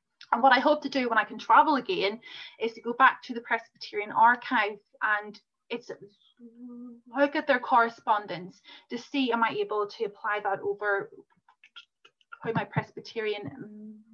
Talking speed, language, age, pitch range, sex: 155 wpm, English, 30-49, 220-280 Hz, female